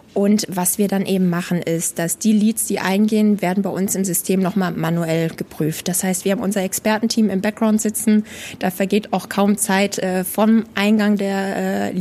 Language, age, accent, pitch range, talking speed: German, 20-39, German, 185-215 Hz, 195 wpm